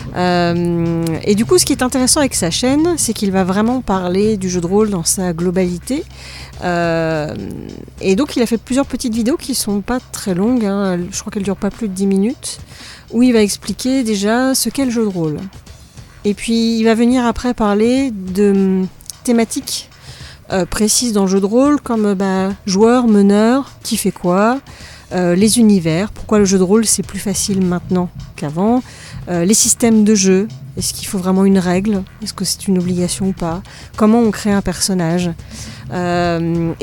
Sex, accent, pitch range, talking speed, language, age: female, French, 180-225 Hz, 195 wpm, French, 40-59